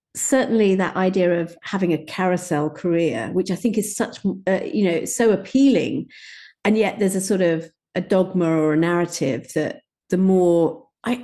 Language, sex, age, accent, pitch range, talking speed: English, female, 50-69, British, 165-210 Hz, 175 wpm